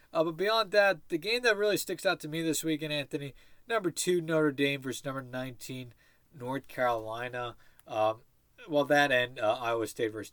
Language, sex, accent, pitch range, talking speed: English, male, American, 115-150 Hz, 185 wpm